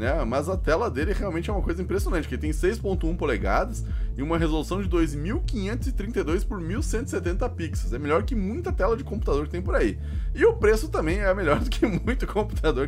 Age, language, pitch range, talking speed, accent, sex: 20-39, Portuguese, 130-190 Hz, 205 wpm, Brazilian, male